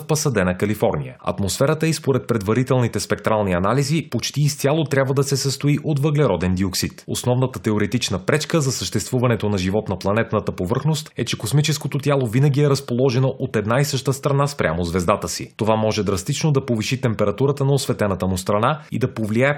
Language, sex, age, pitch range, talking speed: Bulgarian, male, 30-49, 105-140 Hz, 170 wpm